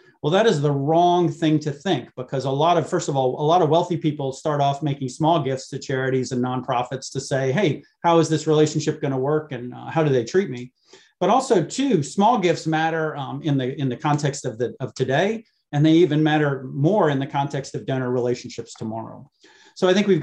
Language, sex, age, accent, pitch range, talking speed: English, male, 40-59, American, 135-165 Hz, 230 wpm